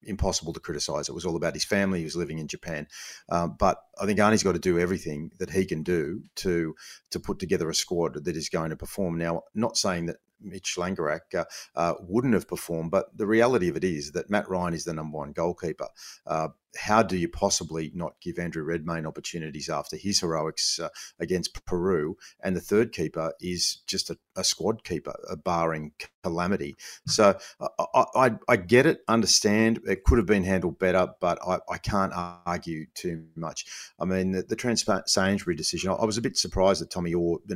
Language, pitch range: English, 80-95 Hz